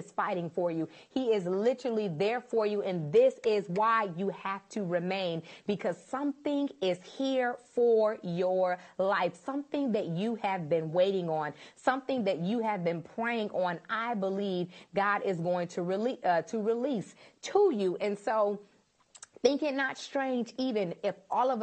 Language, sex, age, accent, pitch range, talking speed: English, female, 30-49, American, 175-225 Hz, 165 wpm